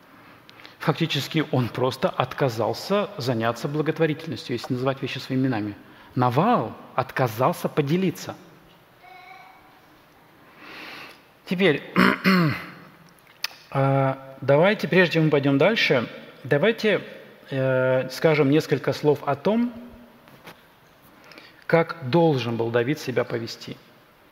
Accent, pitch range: native, 130-170 Hz